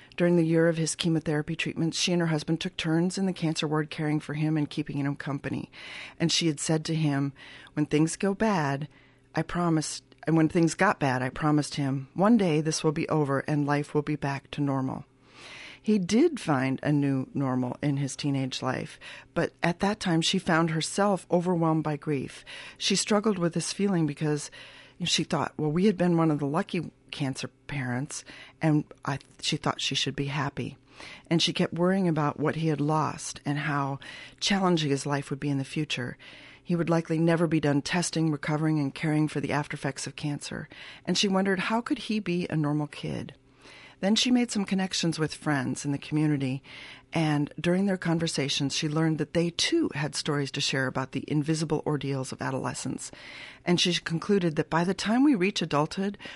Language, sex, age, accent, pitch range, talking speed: English, female, 40-59, American, 140-175 Hz, 200 wpm